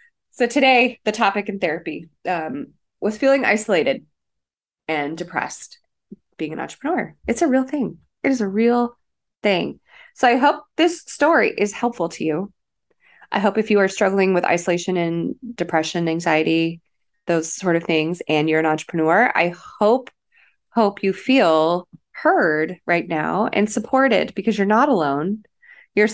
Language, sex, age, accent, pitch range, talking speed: English, female, 20-39, American, 165-230 Hz, 155 wpm